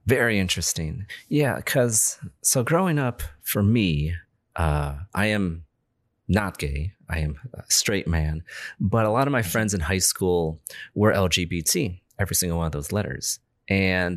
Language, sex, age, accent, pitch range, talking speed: English, male, 30-49, American, 85-110 Hz, 155 wpm